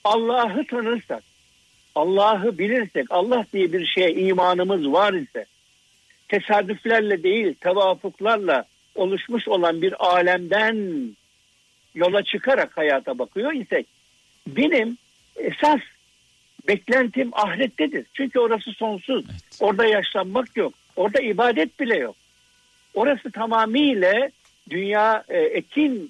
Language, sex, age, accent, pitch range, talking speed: Turkish, male, 60-79, native, 180-245 Hz, 95 wpm